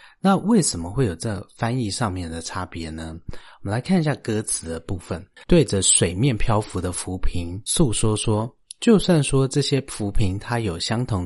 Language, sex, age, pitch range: Chinese, male, 30-49, 90-120 Hz